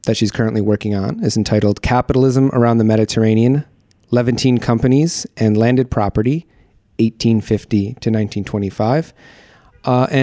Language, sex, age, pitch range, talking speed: English, male, 30-49, 110-135 Hz, 115 wpm